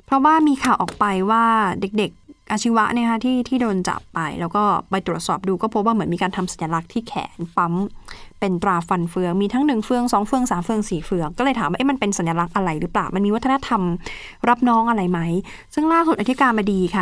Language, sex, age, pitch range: Thai, female, 20-39, 185-230 Hz